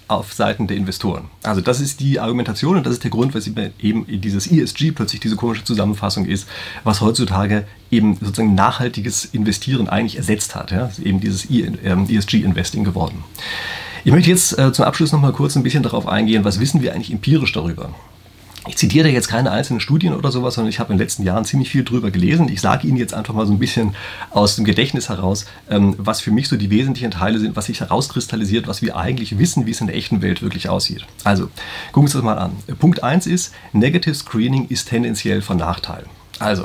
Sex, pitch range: male, 100-130 Hz